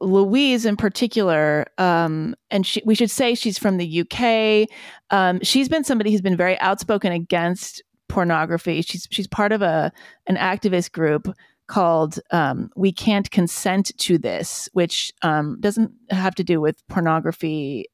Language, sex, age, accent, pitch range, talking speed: English, female, 30-49, American, 160-215 Hz, 155 wpm